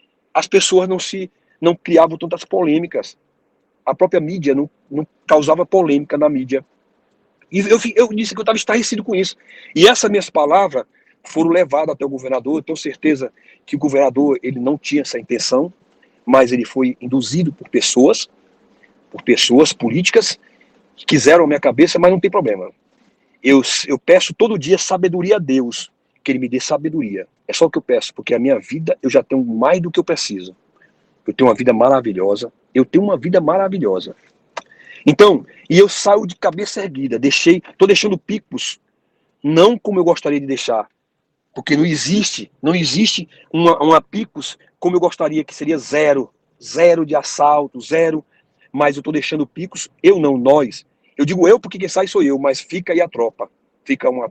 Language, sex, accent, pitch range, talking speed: Portuguese, male, Brazilian, 145-200 Hz, 180 wpm